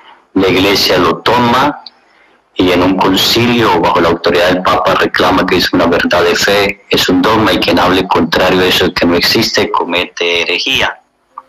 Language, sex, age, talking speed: Spanish, male, 40-59, 180 wpm